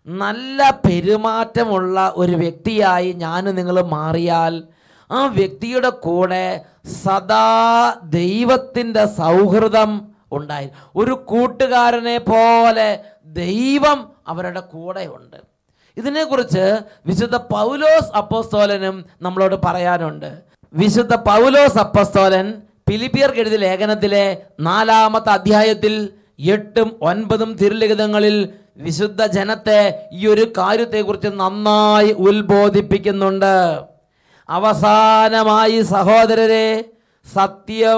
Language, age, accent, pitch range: English, 30-49, Indian, 195-225 Hz